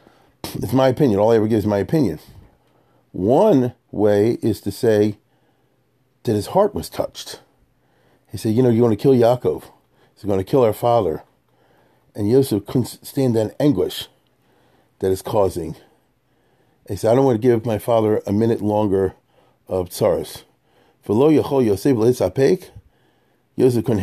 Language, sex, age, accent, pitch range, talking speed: English, male, 40-59, American, 100-125 Hz, 155 wpm